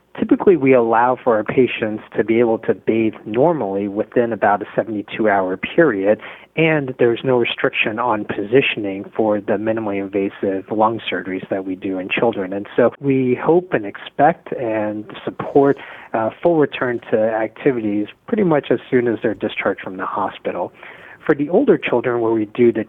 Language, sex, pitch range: English, male, 105-130 Hz